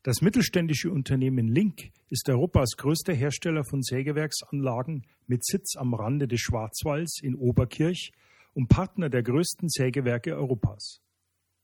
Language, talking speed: German, 125 wpm